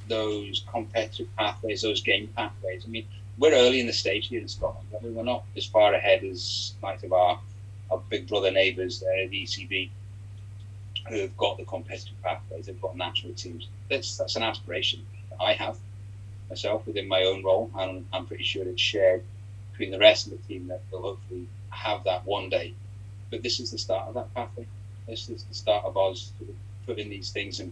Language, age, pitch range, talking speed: English, 30-49, 95-105 Hz, 195 wpm